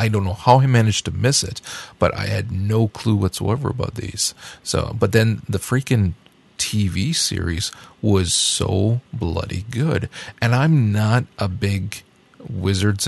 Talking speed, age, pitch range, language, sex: 155 wpm, 40-59, 95-115 Hz, English, male